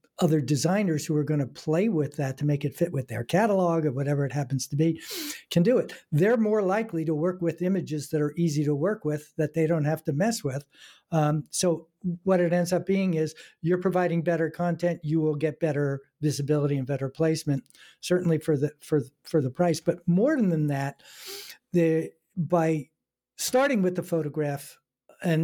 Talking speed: 195 wpm